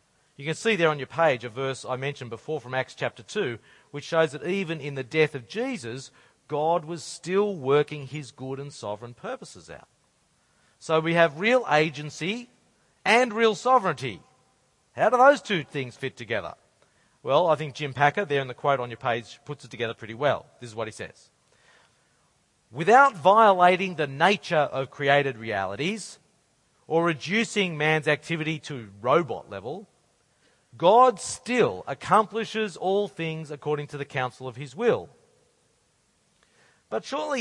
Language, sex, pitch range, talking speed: English, male, 130-180 Hz, 160 wpm